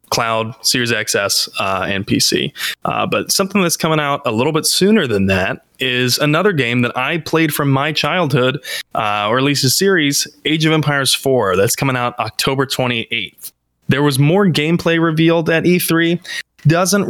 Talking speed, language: 175 wpm, English